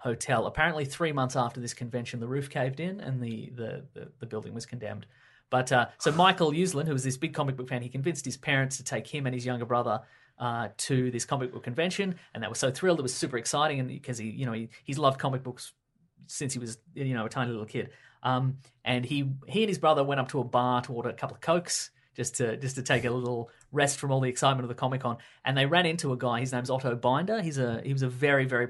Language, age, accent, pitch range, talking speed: English, 30-49, Australian, 120-140 Hz, 265 wpm